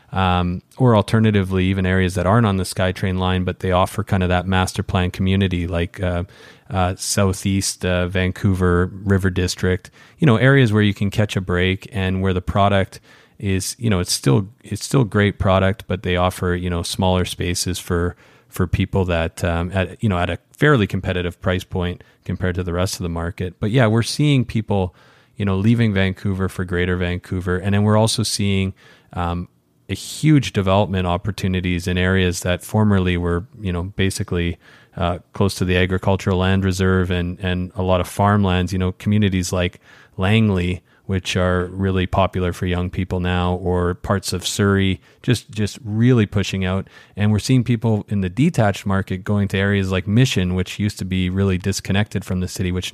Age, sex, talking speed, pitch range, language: 30-49, male, 190 wpm, 90-105 Hz, English